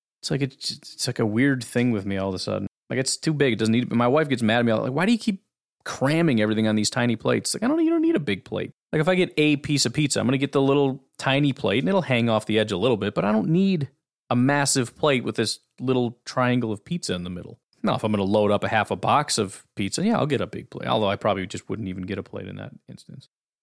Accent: American